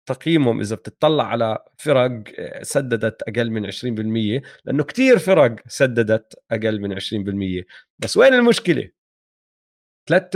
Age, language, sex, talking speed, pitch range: 30-49, Arabic, male, 115 wpm, 120-170 Hz